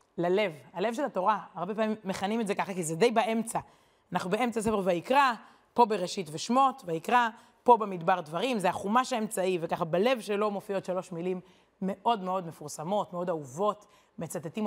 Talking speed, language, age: 165 wpm, Hebrew, 30-49